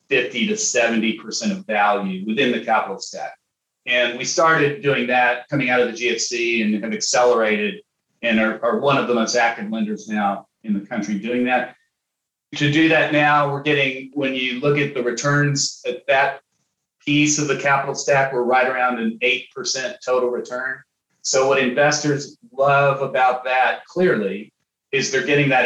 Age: 40-59